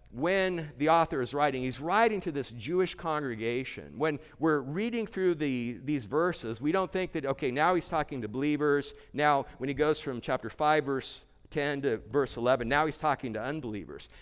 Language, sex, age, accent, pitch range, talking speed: English, male, 50-69, American, 135-185 Hz, 185 wpm